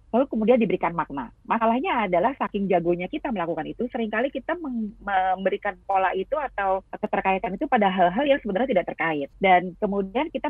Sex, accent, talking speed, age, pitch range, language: female, native, 160 wpm, 30-49, 180-245 Hz, Indonesian